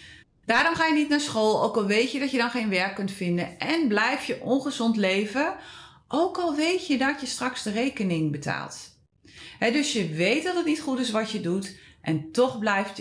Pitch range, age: 170-240 Hz, 30-49